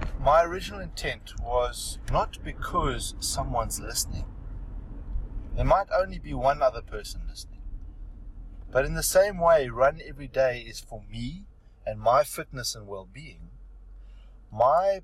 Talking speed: 130 wpm